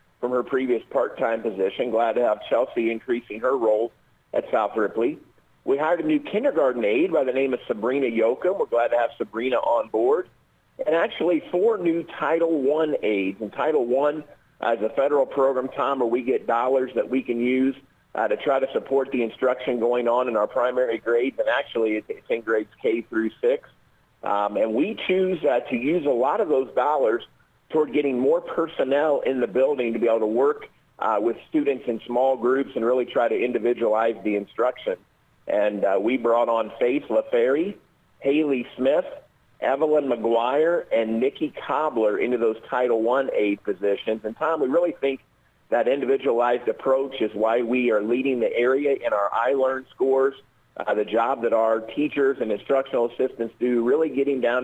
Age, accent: 50-69, American